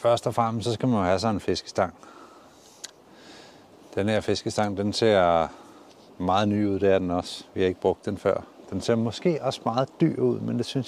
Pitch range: 95-115 Hz